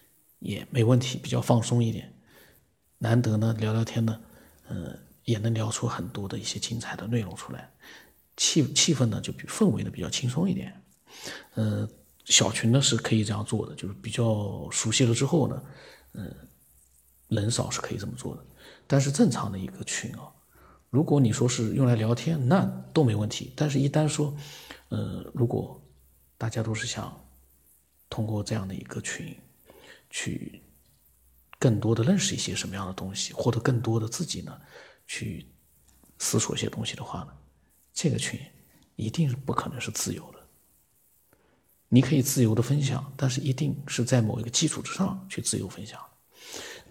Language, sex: Chinese, male